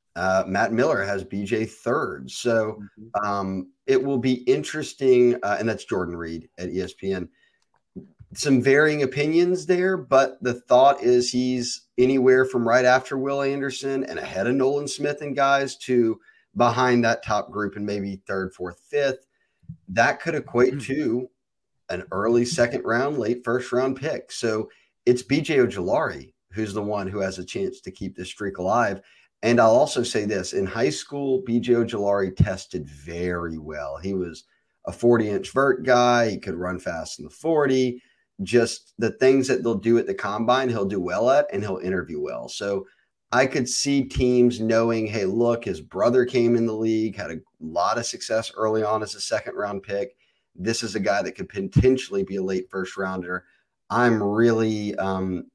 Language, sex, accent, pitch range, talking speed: English, male, American, 100-130 Hz, 175 wpm